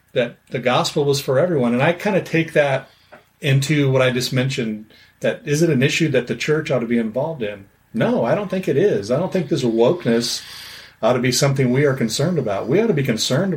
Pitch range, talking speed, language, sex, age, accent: 120-160 Hz, 240 wpm, English, male, 40-59, American